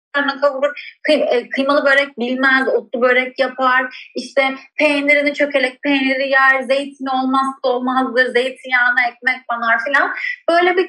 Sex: female